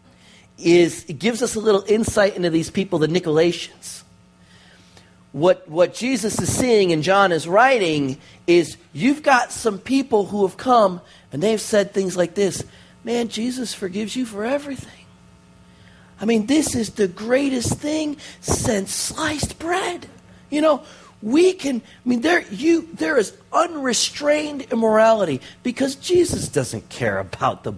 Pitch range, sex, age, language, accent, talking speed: 180-285 Hz, male, 40-59, English, American, 150 wpm